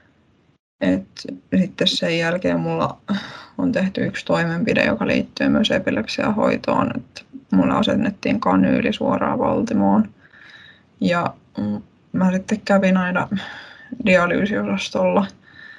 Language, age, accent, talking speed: Finnish, 20-39, native, 95 wpm